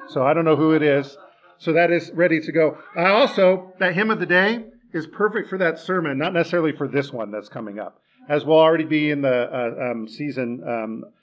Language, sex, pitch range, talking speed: English, male, 140-175 Hz, 230 wpm